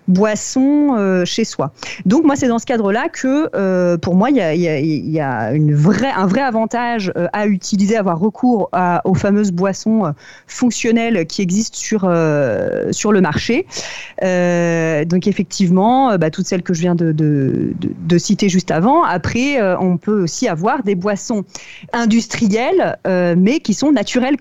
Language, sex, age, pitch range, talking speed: French, female, 30-49, 175-225 Hz, 185 wpm